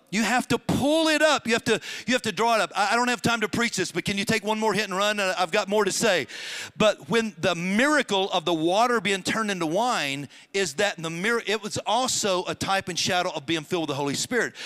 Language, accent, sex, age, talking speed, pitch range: English, American, male, 50-69, 270 wpm, 165-225 Hz